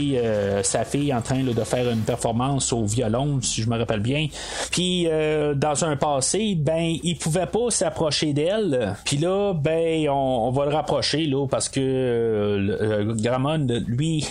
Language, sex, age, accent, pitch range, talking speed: French, male, 30-49, Canadian, 125-165 Hz, 185 wpm